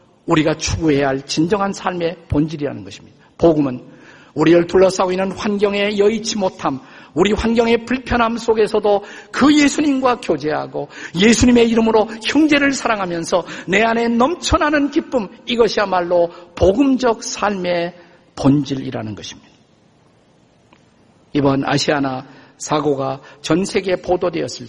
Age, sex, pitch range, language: 50-69, male, 150-225 Hz, Korean